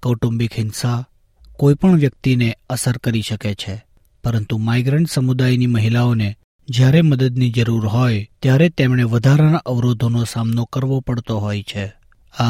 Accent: native